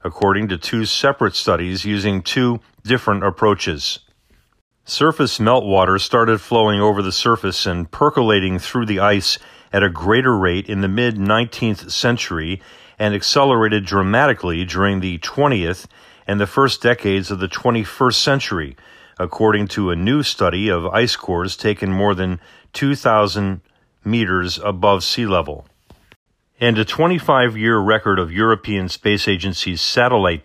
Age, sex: 40-59, male